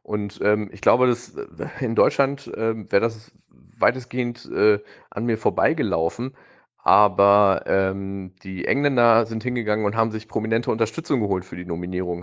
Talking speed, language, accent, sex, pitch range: 140 wpm, German, German, male, 90-110 Hz